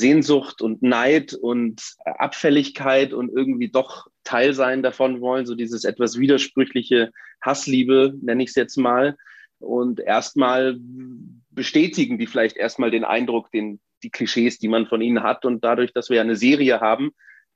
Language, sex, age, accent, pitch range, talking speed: German, male, 30-49, German, 115-130 Hz, 155 wpm